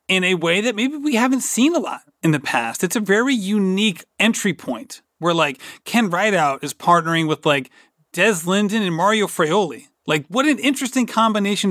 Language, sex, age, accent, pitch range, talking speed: English, male, 30-49, American, 155-205 Hz, 190 wpm